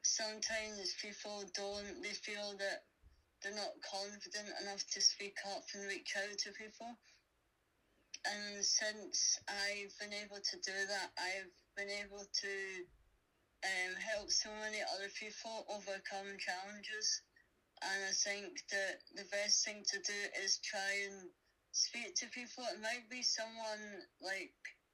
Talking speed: 140 wpm